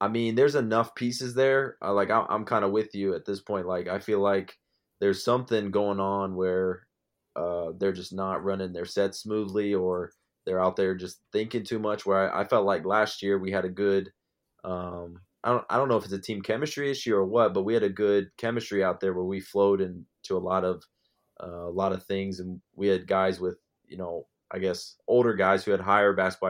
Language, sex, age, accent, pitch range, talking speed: English, male, 20-39, American, 95-100 Hz, 225 wpm